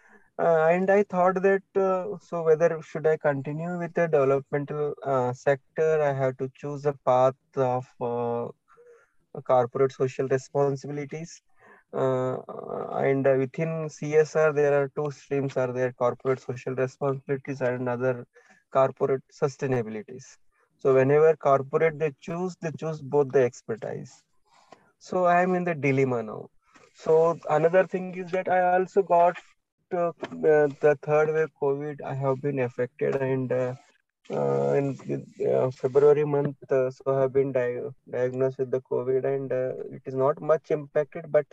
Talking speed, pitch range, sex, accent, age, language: 150 wpm, 130-160 Hz, male, Indian, 20-39, English